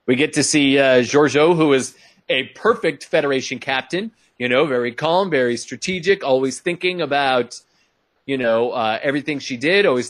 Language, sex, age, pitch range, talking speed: English, male, 30-49, 125-180 Hz, 165 wpm